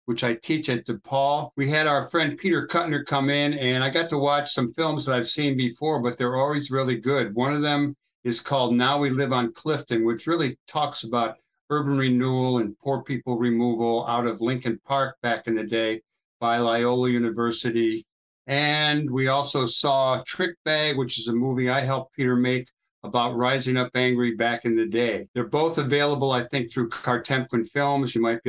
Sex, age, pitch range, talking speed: male, 60-79, 120-145 Hz, 195 wpm